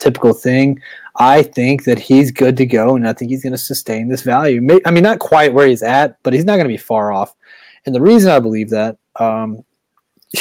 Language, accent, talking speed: English, American, 230 wpm